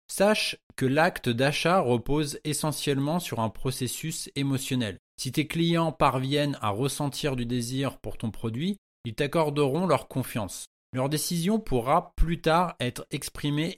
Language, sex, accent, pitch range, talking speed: French, male, French, 125-160 Hz, 140 wpm